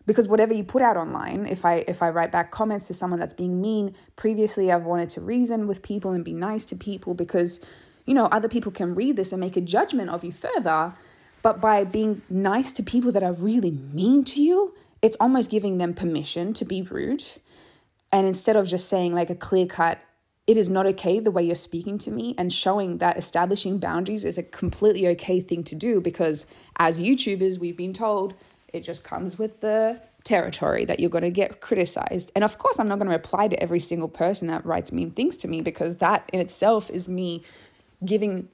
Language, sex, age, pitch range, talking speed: English, female, 20-39, 175-215 Hz, 215 wpm